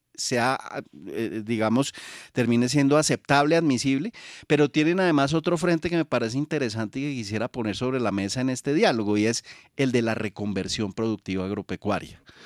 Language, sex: Spanish, male